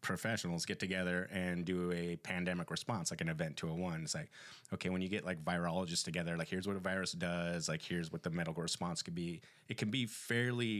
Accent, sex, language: American, male, English